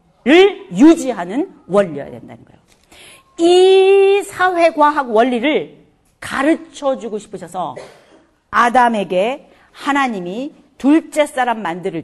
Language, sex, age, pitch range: Korean, female, 40-59, 250-335 Hz